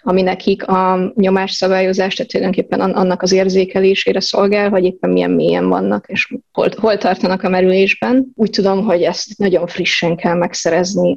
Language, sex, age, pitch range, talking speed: Hungarian, female, 20-39, 185-200 Hz, 150 wpm